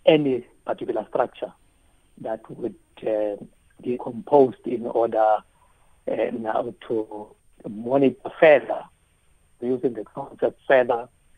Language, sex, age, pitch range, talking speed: English, male, 60-79, 110-140 Hz, 100 wpm